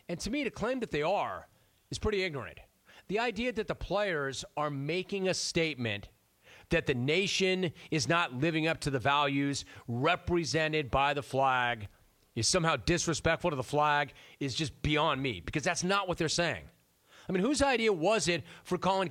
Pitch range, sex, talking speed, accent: 150-200 Hz, male, 180 wpm, American